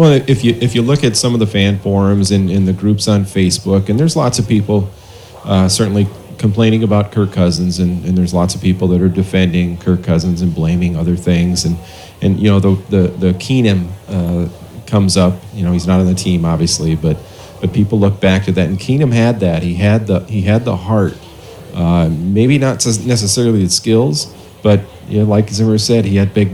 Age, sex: 40-59, male